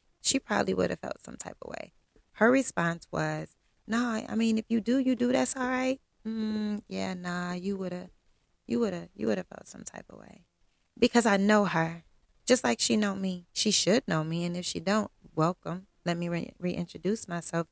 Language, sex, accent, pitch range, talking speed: English, female, American, 160-215 Hz, 215 wpm